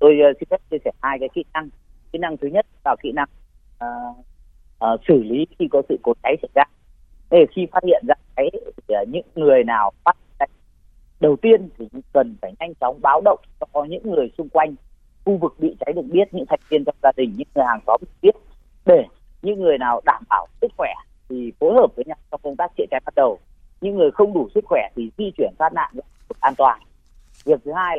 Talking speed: 230 wpm